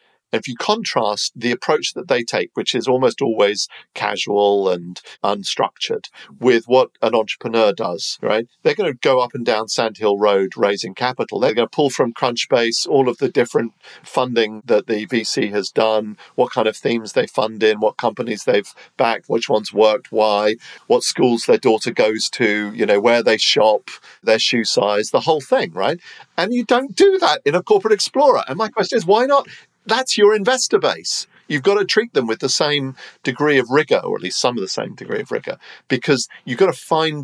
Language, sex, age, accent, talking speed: English, male, 50-69, British, 205 wpm